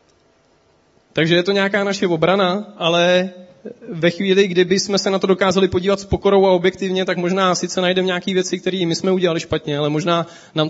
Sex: male